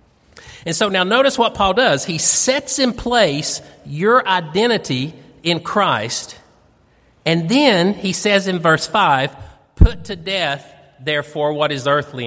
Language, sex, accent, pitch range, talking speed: English, male, American, 140-190 Hz, 140 wpm